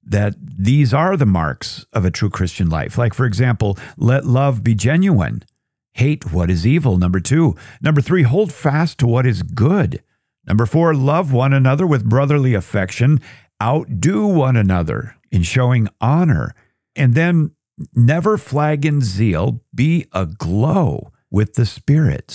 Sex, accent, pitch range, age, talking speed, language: male, American, 105-145 Hz, 50-69, 150 wpm, English